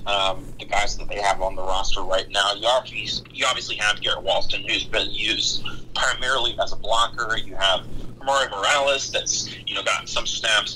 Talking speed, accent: 195 wpm, American